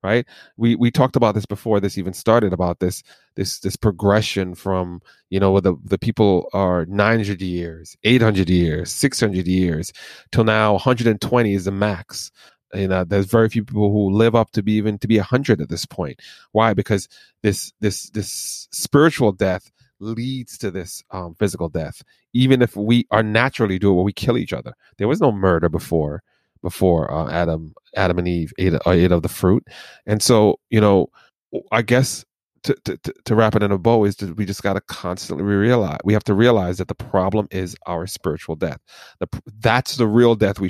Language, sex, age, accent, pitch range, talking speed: English, male, 30-49, American, 95-110 Hz, 195 wpm